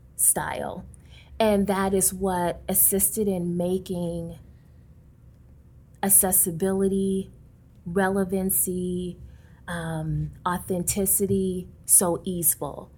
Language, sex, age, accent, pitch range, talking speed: English, female, 20-39, American, 170-195 Hz, 65 wpm